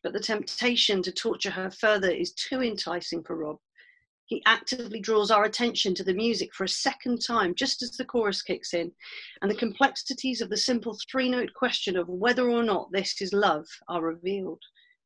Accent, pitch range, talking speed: British, 190-240 Hz, 190 wpm